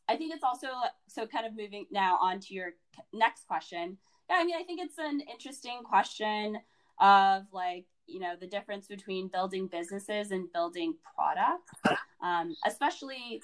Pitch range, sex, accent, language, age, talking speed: 185-290 Hz, female, American, English, 20-39, 160 wpm